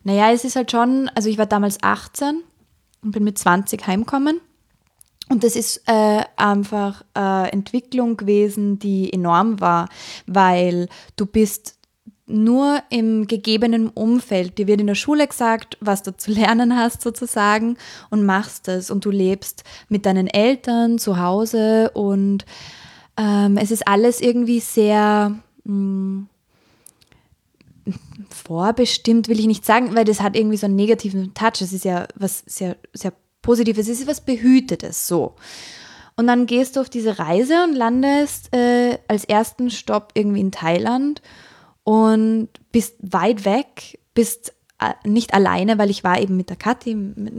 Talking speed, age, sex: 150 wpm, 20-39, female